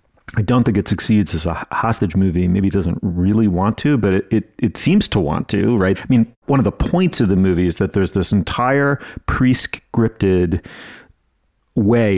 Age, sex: 40-59, male